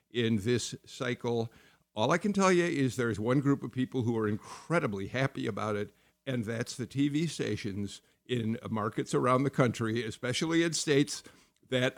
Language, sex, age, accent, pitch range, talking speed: English, male, 50-69, American, 115-145 Hz, 170 wpm